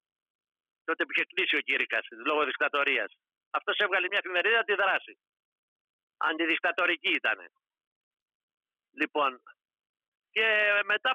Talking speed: 95 wpm